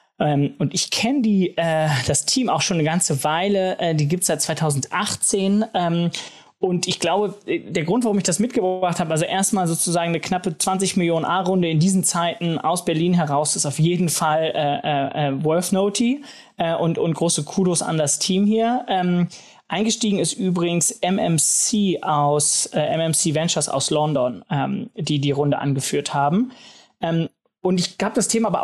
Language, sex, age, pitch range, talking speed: German, male, 20-39, 155-190 Hz, 170 wpm